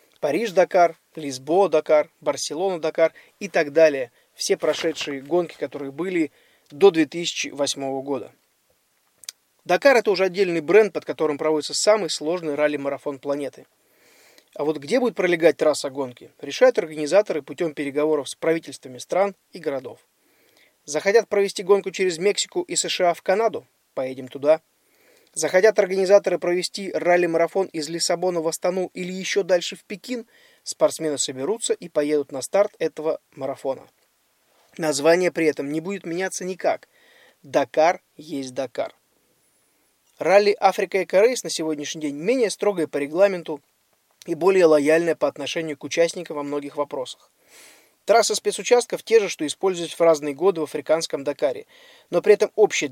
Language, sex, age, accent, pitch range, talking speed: Russian, male, 20-39, native, 150-200 Hz, 135 wpm